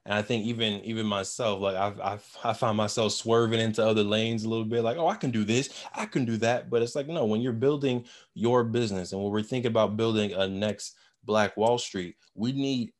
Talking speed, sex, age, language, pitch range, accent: 235 wpm, male, 20-39, English, 105-120 Hz, American